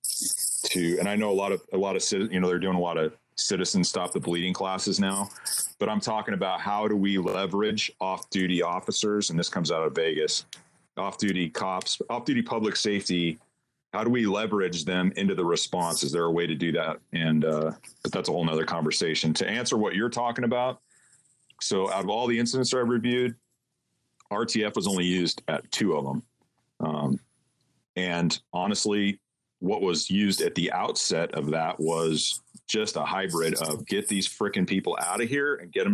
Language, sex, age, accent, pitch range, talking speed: English, male, 40-59, American, 90-120 Hz, 195 wpm